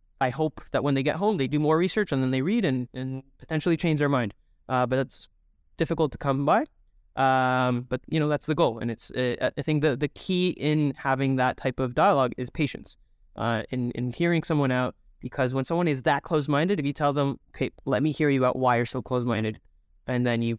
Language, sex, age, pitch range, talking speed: English, male, 20-39, 120-150 Hz, 240 wpm